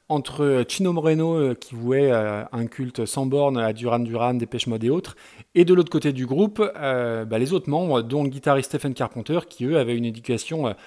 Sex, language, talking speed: male, French, 195 wpm